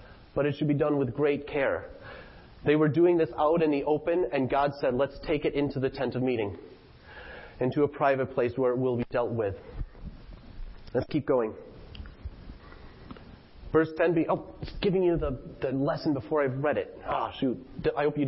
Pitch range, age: 130-205 Hz, 30-49